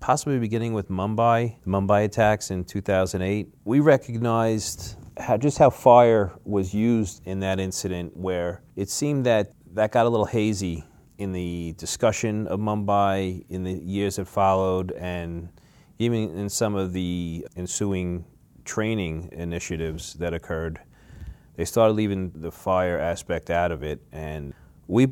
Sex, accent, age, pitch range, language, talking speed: male, American, 30-49, 85-105 Hz, English, 145 wpm